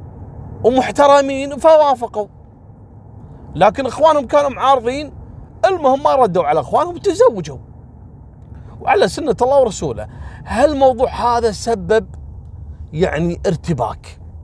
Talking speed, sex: 85 wpm, male